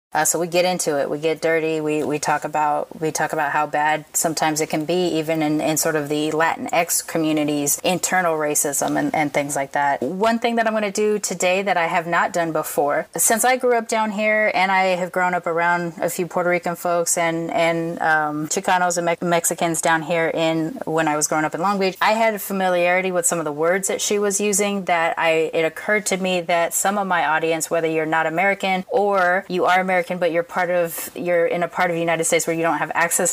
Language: English